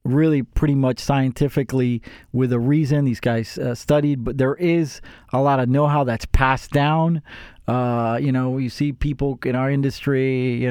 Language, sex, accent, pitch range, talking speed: English, male, American, 120-150 Hz, 175 wpm